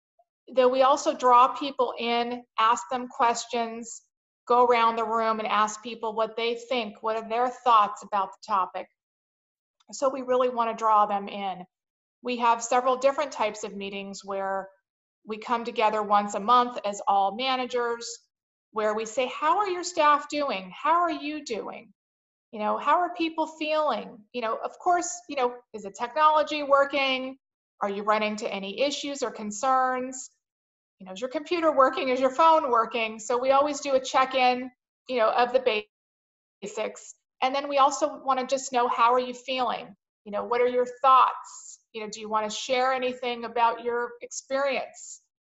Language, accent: English, American